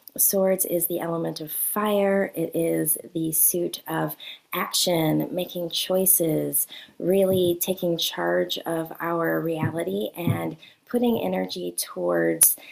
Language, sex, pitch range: English, female, 165-200 Hz